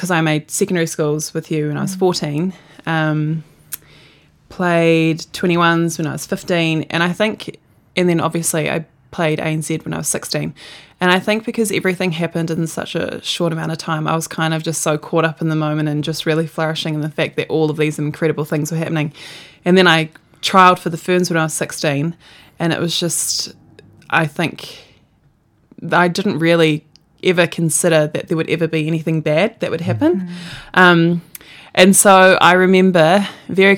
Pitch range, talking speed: 155-170 Hz, 190 wpm